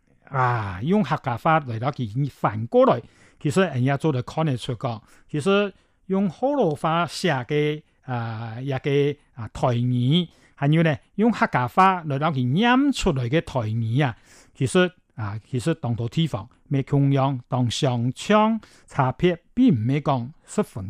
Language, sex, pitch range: Chinese, male, 125-175 Hz